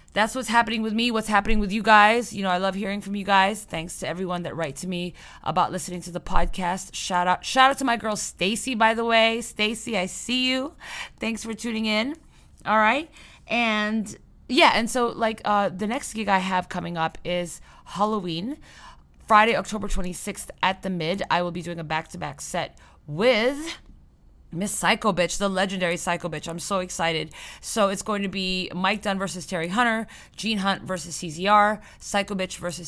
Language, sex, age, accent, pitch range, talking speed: English, female, 20-39, American, 180-225 Hz, 200 wpm